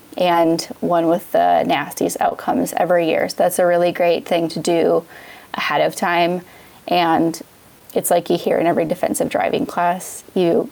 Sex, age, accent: female, 20-39, American